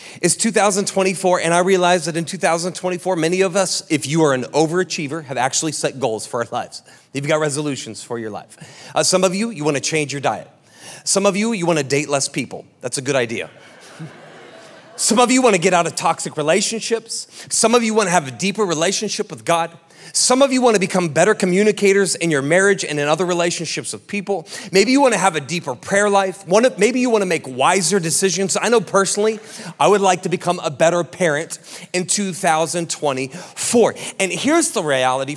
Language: English